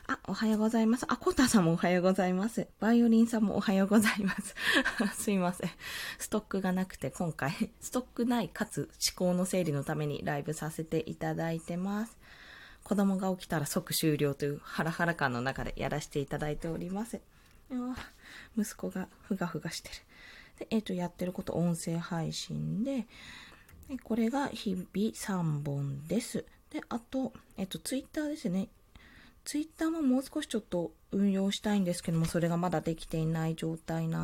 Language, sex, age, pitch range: Japanese, female, 20-39, 160-225 Hz